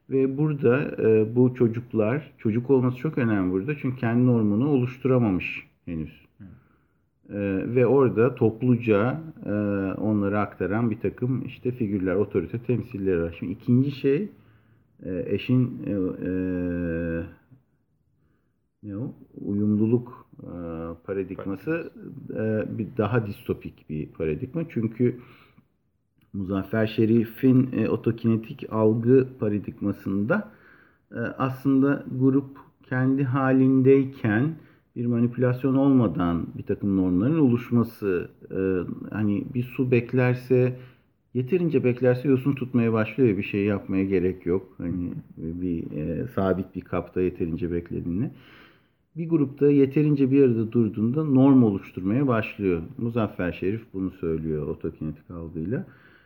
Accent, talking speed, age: native, 115 wpm, 50-69